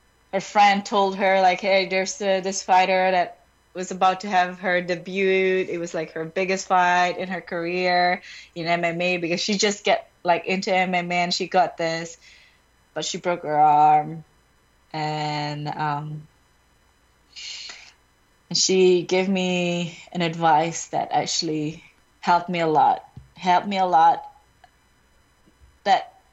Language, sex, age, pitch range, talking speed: English, female, 20-39, 175-210 Hz, 140 wpm